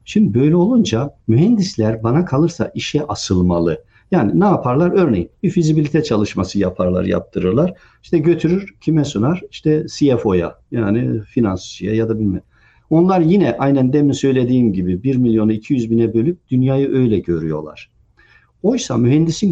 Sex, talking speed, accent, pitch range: male, 135 wpm, native, 105-140 Hz